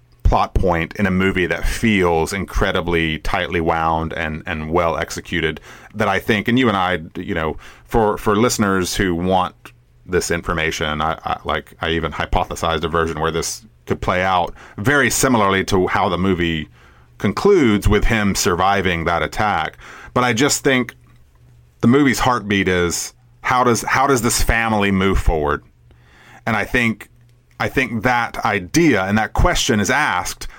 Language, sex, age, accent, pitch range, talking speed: English, male, 30-49, American, 80-110 Hz, 165 wpm